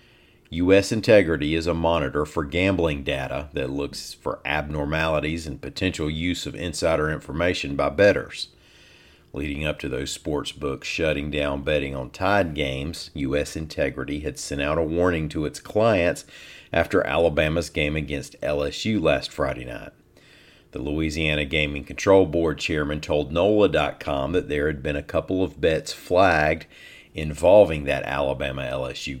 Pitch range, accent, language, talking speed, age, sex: 70-85 Hz, American, English, 140 wpm, 50-69, male